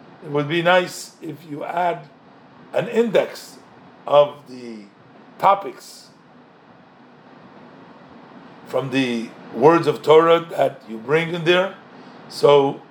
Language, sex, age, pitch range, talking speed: English, male, 50-69, 145-195 Hz, 105 wpm